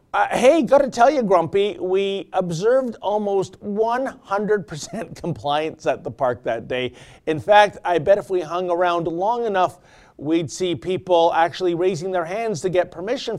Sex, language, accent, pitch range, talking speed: male, English, American, 155-205 Hz, 165 wpm